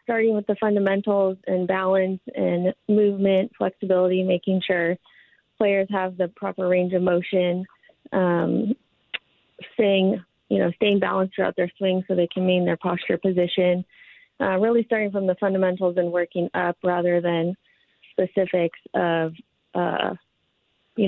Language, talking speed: English, 140 wpm